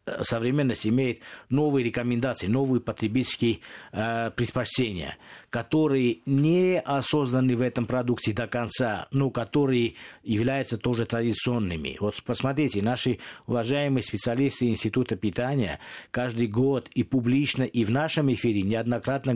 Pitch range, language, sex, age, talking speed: 110-135 Hz, Russian, male, 50-69, 115 wpm